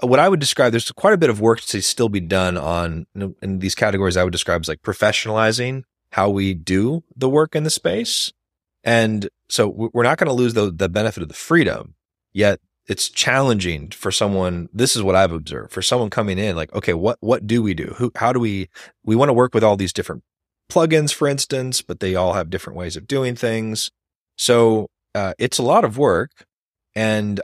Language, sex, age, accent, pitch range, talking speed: English, male, 30-49, American, 90-115 Hz, 210 wpm